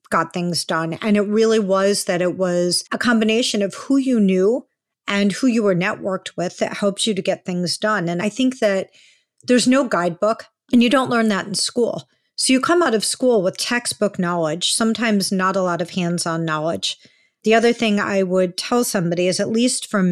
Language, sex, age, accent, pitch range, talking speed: English, female, 50-69, American, 175-220 Hz, 210 wpm